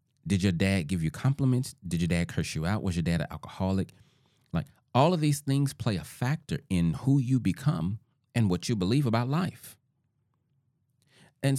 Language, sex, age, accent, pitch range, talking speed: English, male, 30-49, American, 100-140 Hz, 185 wpm